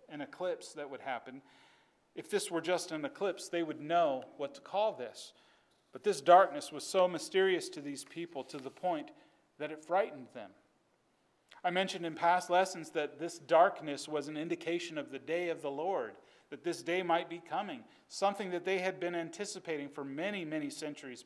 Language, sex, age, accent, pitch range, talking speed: English, male, 40-59, American, 145-175 Hz, 190 wpm